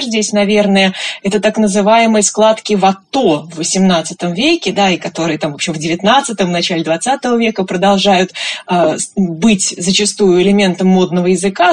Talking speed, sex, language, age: 150 wpm, female, Russian, 20-39